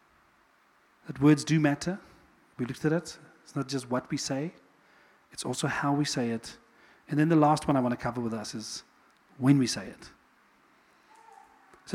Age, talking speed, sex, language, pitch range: 40-59, 185 wpm, male, English, 125-195 Hz